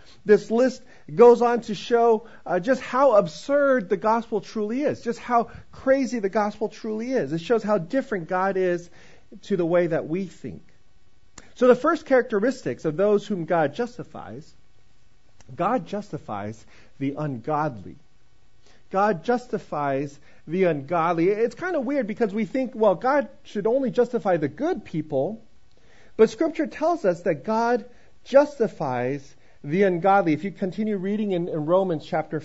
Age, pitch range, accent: 40-59, 170-235 Hz, American